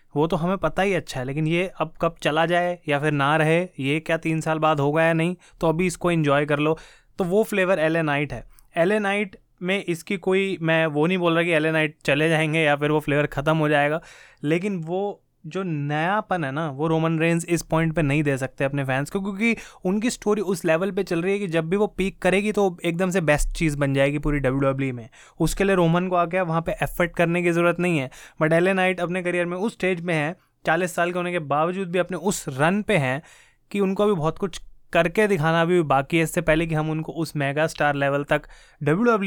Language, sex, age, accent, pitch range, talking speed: Hindi, male, 20-39, native, 150-180 Hz, 240 wpm